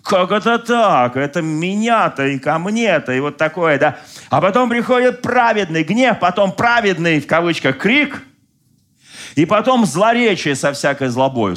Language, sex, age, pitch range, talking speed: Russian, male, 40-59, 115-185 Hz, 145 wpm